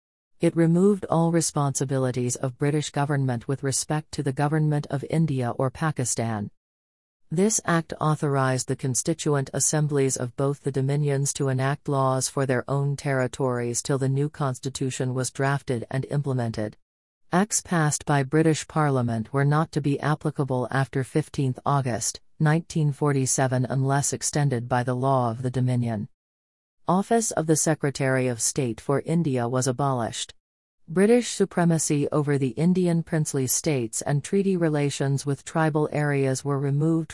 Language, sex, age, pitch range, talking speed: English, female, 40-59, 130-155 Hz, 140 wpm